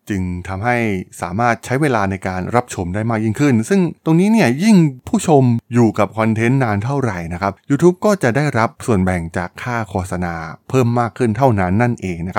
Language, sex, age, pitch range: Thai, male, 20-39, 95-135 Hz